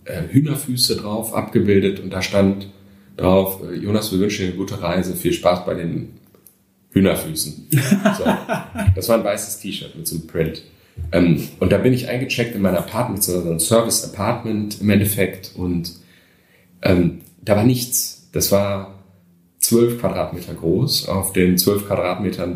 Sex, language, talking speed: male, German, 150 wpm